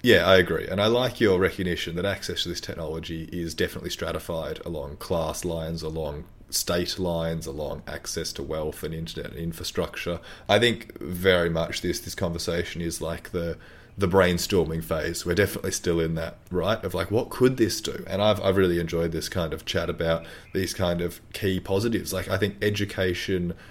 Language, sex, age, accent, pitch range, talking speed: English, male, 30-49, Australian, 85-95 Hz, 185 wpm